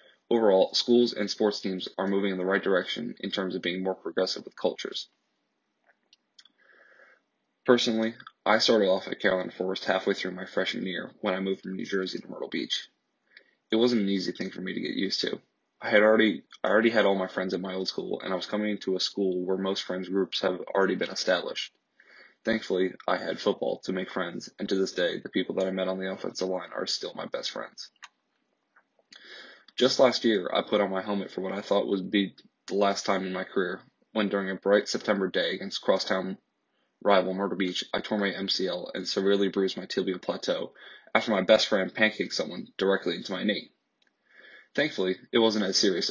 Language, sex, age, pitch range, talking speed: English, male, 20-39, 95-100 Hz, 205 wpm